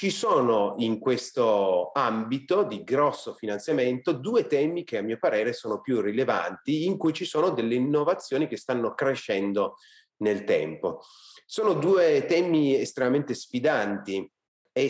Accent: native